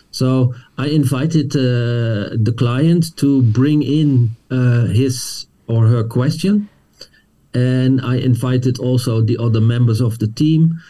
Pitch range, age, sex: 125-150 Hz, 50-69, male